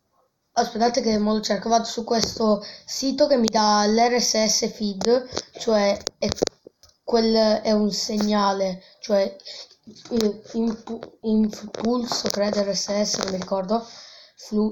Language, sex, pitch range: Italian, female, 210-250 Hz